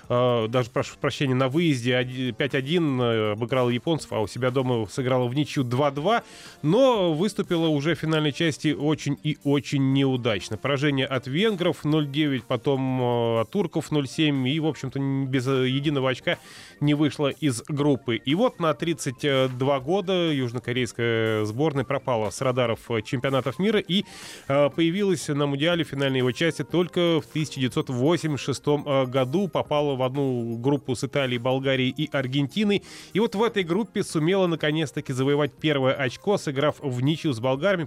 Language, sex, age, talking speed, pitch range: Russian, male, 20-39, 145 wpm, 130-165 Hz